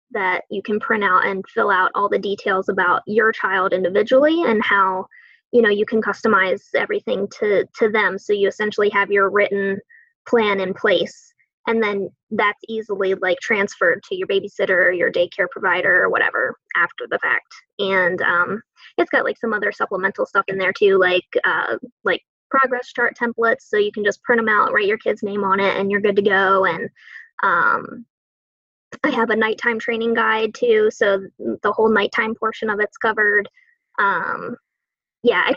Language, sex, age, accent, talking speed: English, female, 20-39, American, 185 wpm